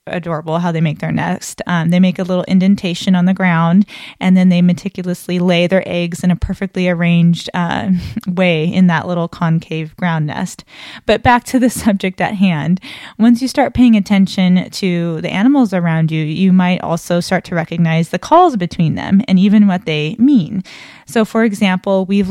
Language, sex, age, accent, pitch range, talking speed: English, female, 20-39, American, 175-200 Hz, 190 wpm